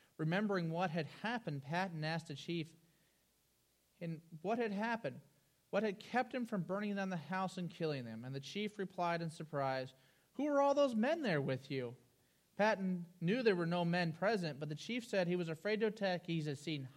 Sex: male